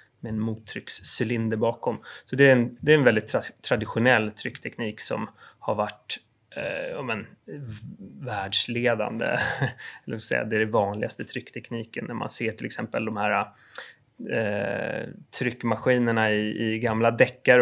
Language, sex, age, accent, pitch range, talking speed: English, male, 20-39, Swedish, 110-130 Hz, 140 wpm